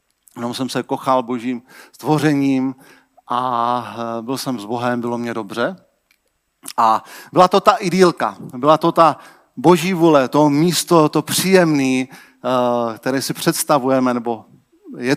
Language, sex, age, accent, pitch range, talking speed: Czech, male, 40-59, native, 130-180 Hz, 130 wpm